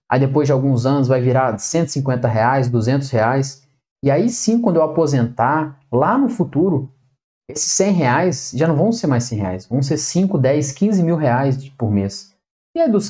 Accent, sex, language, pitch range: Brazilian, male, Portuguese, 125-160 Hz